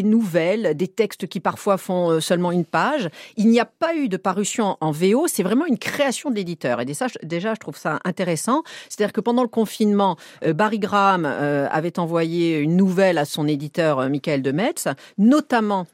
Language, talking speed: French, 180 wpm